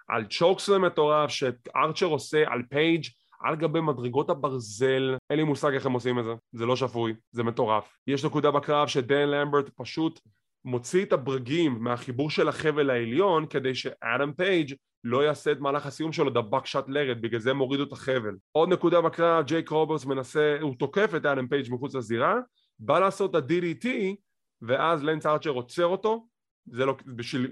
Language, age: English, 20-39